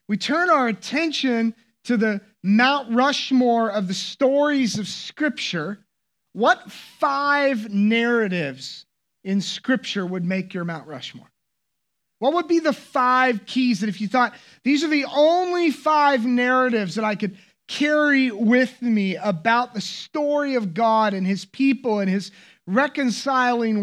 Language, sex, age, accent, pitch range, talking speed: English, male, 30-49, American, 185-250 Hz, 140 wpm